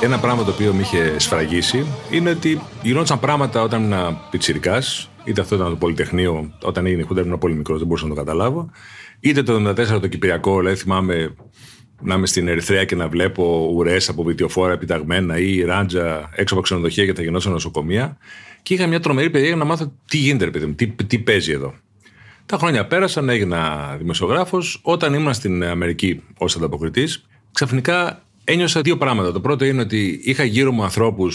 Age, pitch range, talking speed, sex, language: 40-59, 90-140 Hz, 180 wpm, male, Greek